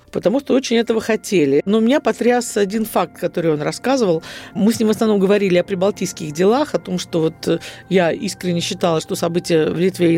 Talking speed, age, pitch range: 210 wpm, 50-69, 165-220 Hz